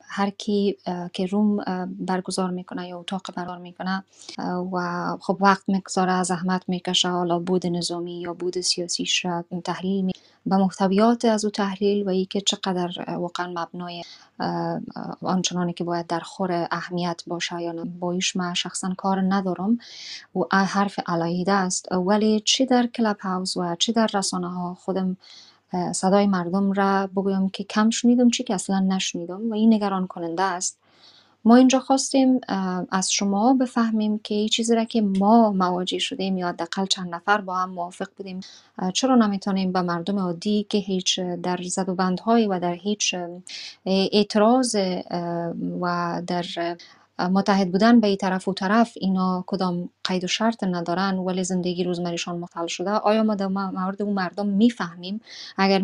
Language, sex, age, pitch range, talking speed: Persian, female, 20-39, 180-210 Hz, 150 wpm